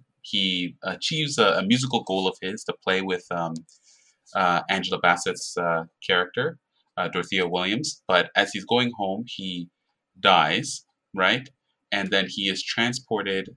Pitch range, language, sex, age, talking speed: 85-105 Hz, English, male, 20-39, 145 wpm